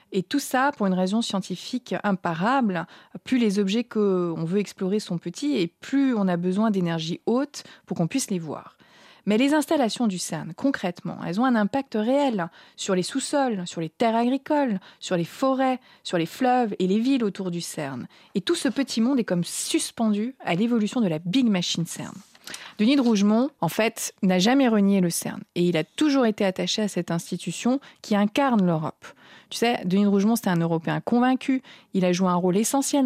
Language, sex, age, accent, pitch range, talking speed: French, female, 30-49, French, 180-240 Hz, 200 wpm